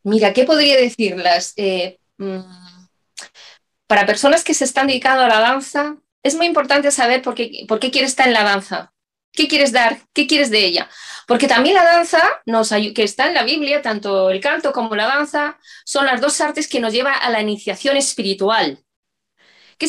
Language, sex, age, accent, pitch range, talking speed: Spanish, female, 20-39, Spanish, 205-285 Hz, 180 wpm